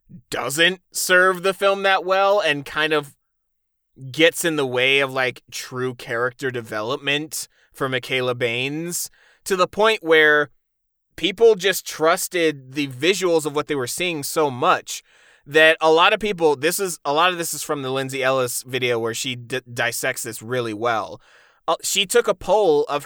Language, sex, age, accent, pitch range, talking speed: English, male, 20-39, American, 130-195 Hz, 170 wpm